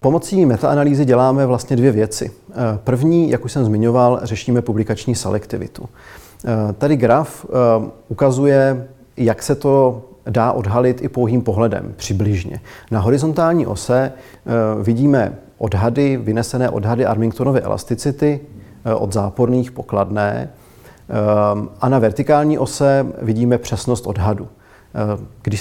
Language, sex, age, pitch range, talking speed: Czech, male, 40-59, 110-130 Hz, 110 wpm